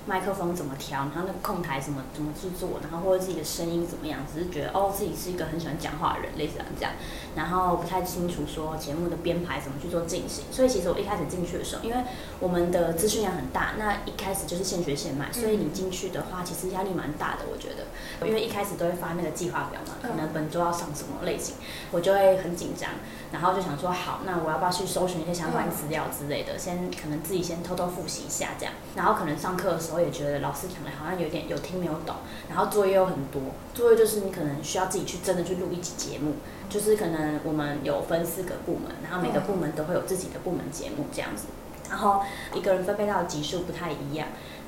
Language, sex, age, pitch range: Chinese, female, 20-39, 160-190 Hz